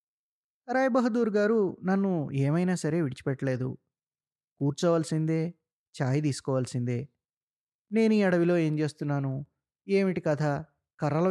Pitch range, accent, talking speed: 135-180 Hz, native, 95 wpm